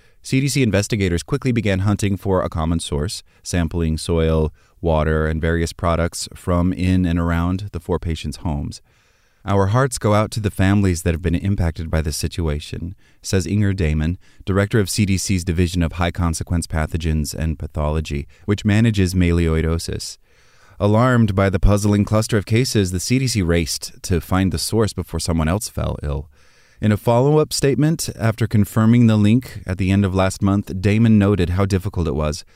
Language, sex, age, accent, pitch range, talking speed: English, male, 30-49, American, 85-110 Hz, 170 wpm